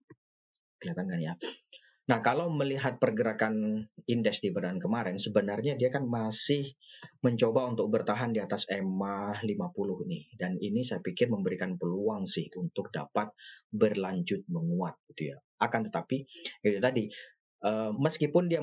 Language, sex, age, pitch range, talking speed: Indonesian, male, 30-49, 105-145 Hz, 140 wpm